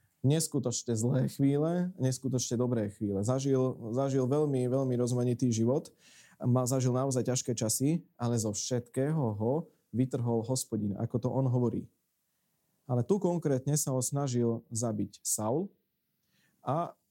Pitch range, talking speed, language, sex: 115-145 Hz, 125 wpm, Slovak, male